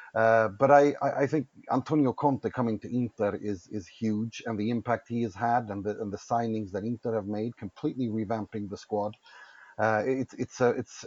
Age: 30-49